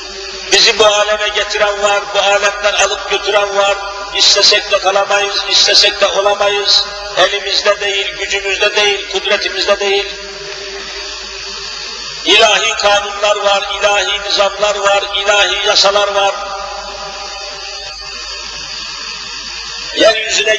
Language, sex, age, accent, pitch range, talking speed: Turkish, male, 50-69, native, 200-220 Hz, 95 wpm